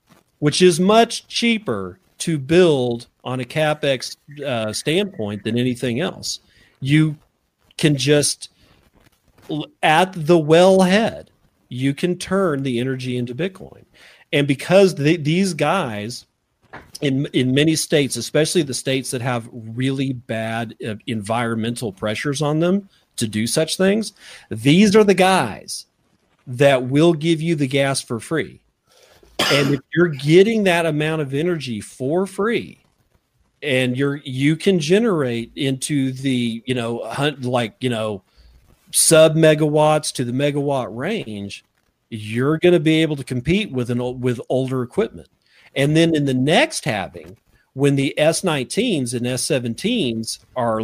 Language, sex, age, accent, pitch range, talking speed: English, male, 40-59, American, 120-160 Hz, 135 wpm